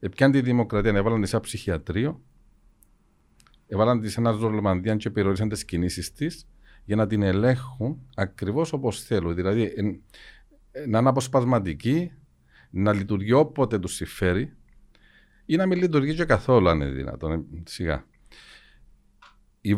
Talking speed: 135 wpm